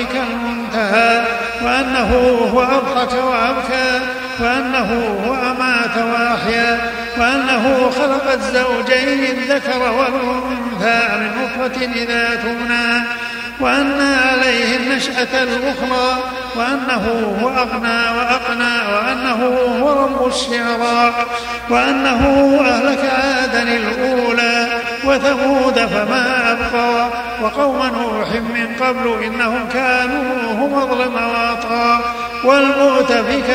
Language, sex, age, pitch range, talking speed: Arabic, male, 50-69, 235-255 Hz, 85 wpm